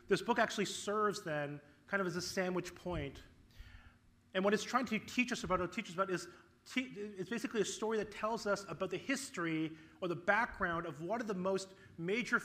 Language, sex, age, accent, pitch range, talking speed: English, male, 30-49, American, 155-200 Hz, 205 wpm